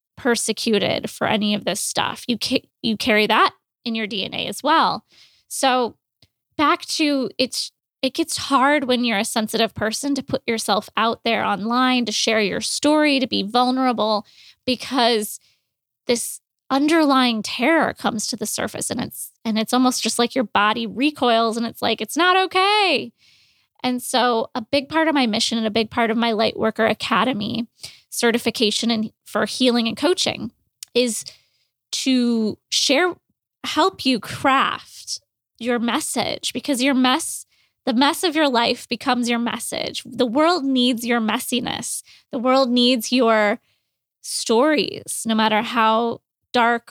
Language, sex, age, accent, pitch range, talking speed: English, female, 20-39, American, 225-265 Hz, 155 wpm